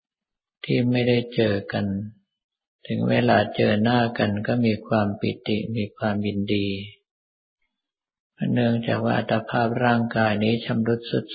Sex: male